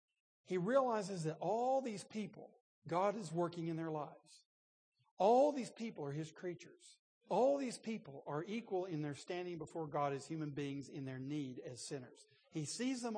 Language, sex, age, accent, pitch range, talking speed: English, male, 60-79, American, 150-220 Hz, 180 wpm